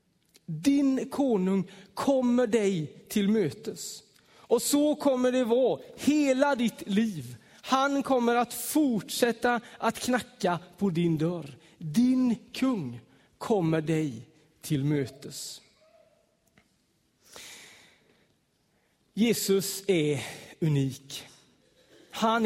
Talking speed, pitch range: 90 wpm, 150-230 Hz